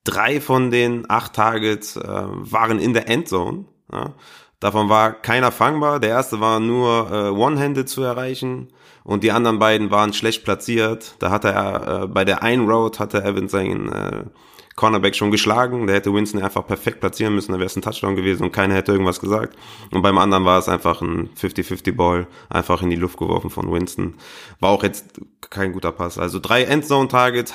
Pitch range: 95-120 Hz